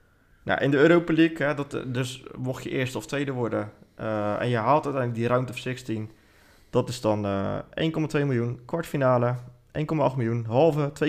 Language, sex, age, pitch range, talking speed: Dutch, male, 20-39, 110-145 Hz, 175 wpm